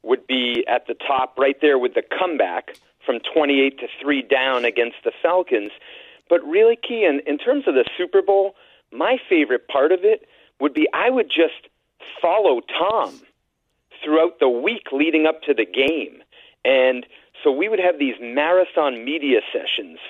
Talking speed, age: 170 wpm, 40-59